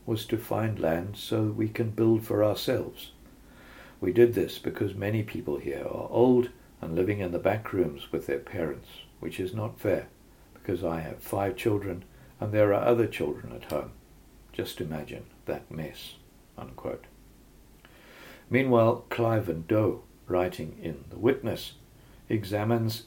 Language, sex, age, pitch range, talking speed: English, male, 60-79, 95-120 Hz, 150 wpm